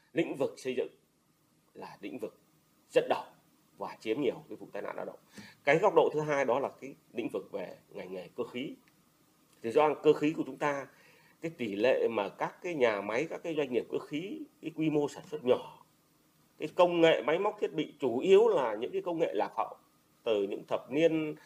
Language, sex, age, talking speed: Vietnamese, male, 30-49, 225 wpm